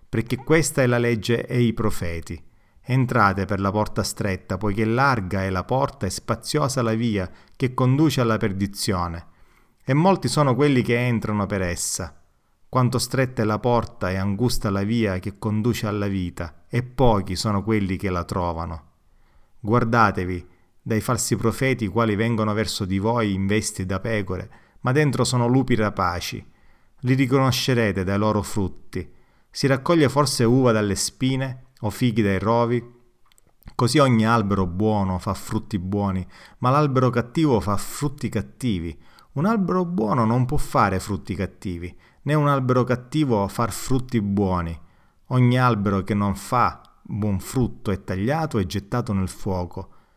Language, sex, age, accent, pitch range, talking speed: Italian, male, 30-49, native, 95-125 Hz, 155 wpm